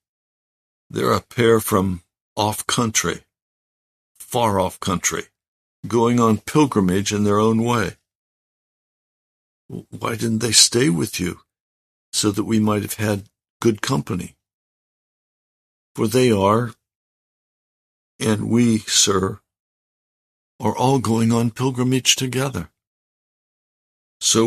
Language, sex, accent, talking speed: English, male, American, 100 wpm